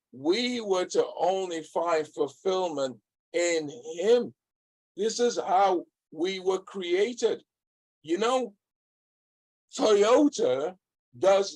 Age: 50-69